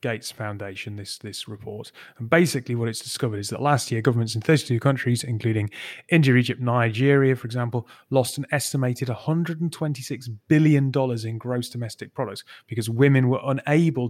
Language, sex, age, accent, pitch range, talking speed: English, male, 30-49, British, 110-130 Hz, 160 wpm